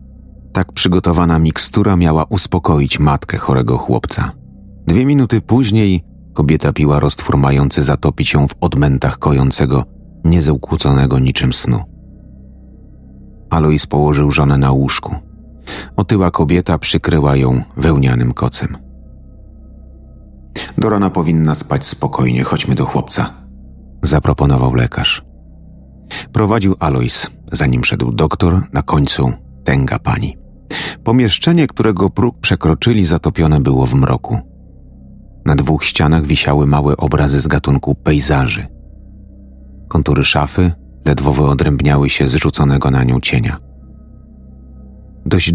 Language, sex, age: Polish, male, 40-59